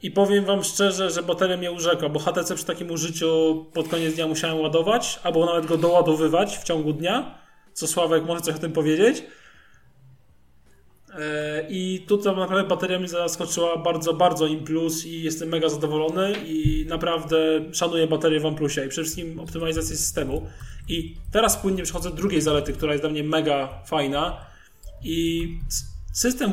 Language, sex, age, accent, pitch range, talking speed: Polish, male, 20-39, native, 155-175 Hz, 165 wpm